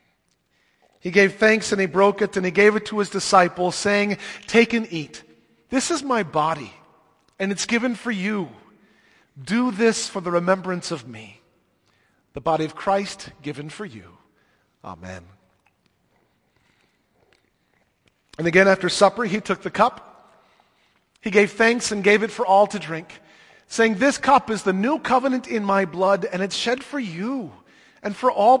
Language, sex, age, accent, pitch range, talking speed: English, male, 40-59, American, 165-225 Hz, 165 wpm